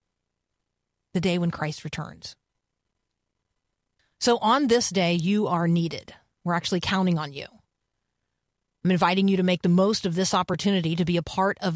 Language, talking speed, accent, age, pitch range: English, 165 wpm, American, 40-59, 165-200 Hz